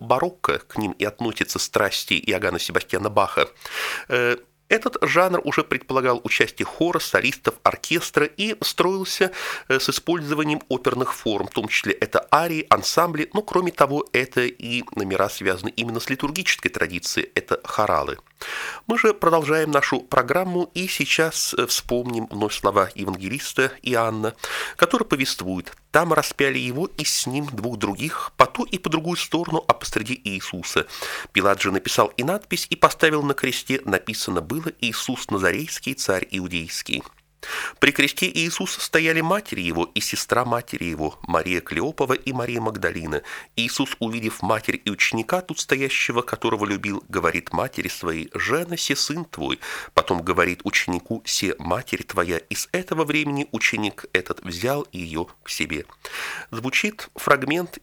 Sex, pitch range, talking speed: male, 115-165 Hz, 140 wpm